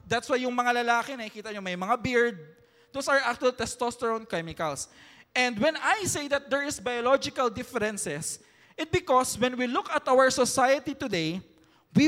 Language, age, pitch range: English, 20-39, 200-270 Hz